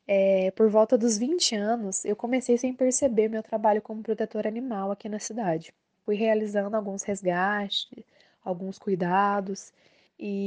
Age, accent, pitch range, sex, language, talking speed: 10-29, Brazilian, 200-235 Hz, female, Portuguese, 145 wpm